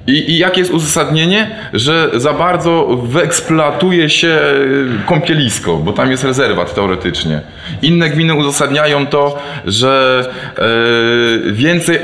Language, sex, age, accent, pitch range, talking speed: Polish, male, 20-39, native, 120-160 Hz, 110 wpm